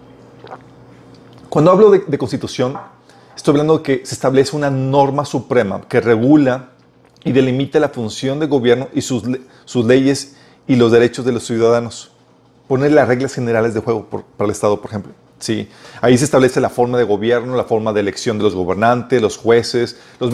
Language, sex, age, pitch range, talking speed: Spanish, male, 40-59, 115-140 Hz, 185 wpm